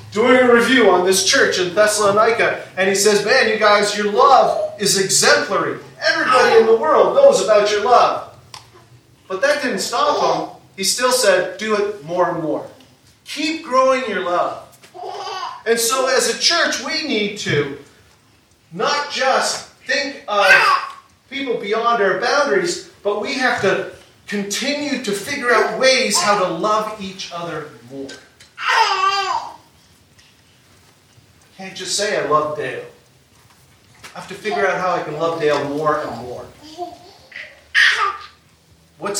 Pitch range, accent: 170-265 Hz, American